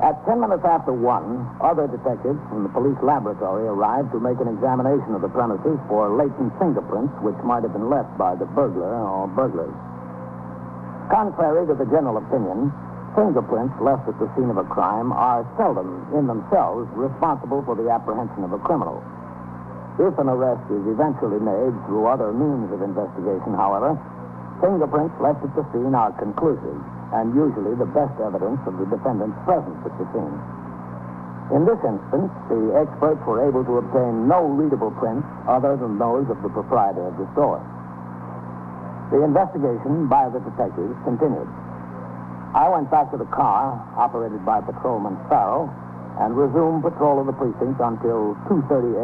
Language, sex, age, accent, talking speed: English, male, 60-79, American, 160 wpm